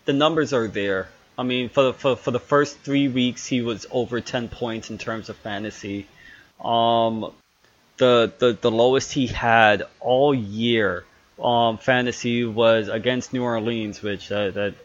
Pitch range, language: 115-135 Hz, English